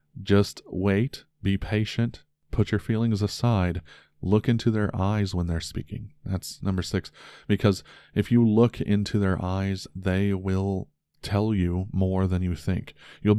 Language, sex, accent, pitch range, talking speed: English, male, American, 90-105 Hz, 150 wpm